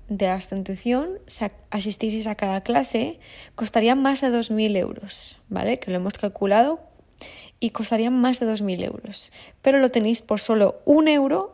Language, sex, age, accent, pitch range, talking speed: Spanish, female, 20-39, Spanish, 210-245 Hz, 155 wpm